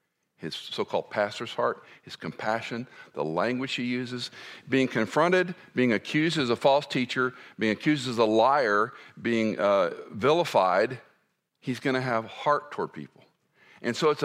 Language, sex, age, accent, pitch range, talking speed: English, male, 50-69, American, 110-140 Hz, 150 wpm